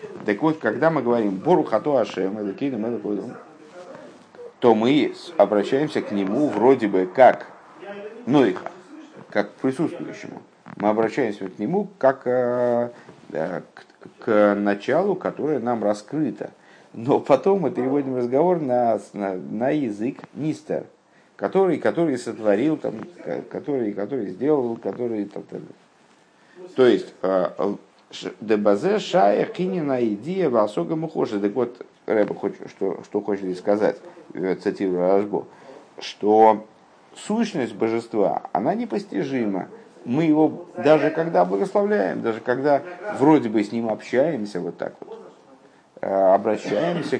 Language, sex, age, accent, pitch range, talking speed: Russian, male, 50-69, native, 105-175 Hz, 100 wpm